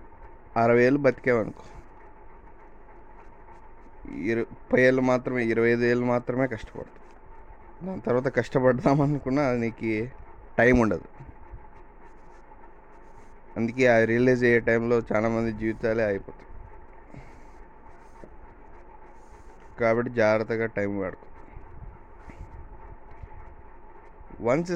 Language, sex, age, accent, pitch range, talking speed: Telugu, male, 20-39, native, 110-125 Hz, 80 wpm